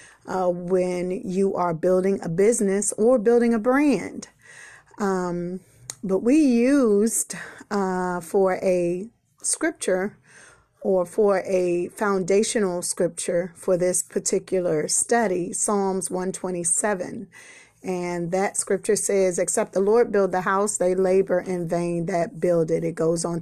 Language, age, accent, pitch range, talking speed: English, 30-49, American, 175-210 Hz, 130 wpm